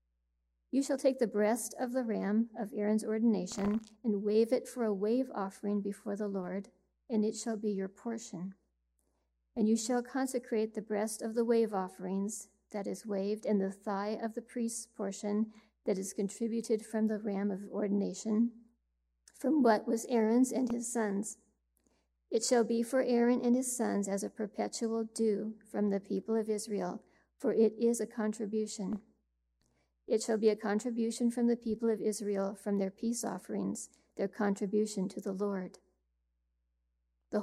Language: English